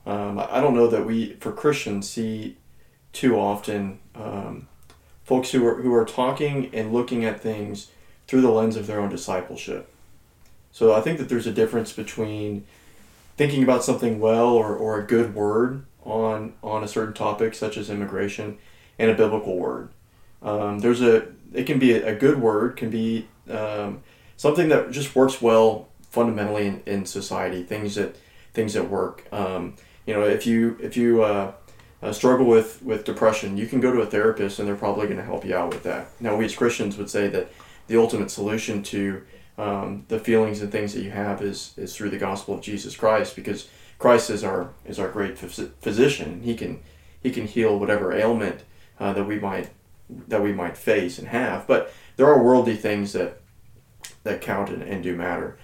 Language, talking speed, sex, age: English, 195 wpm, male, 30-49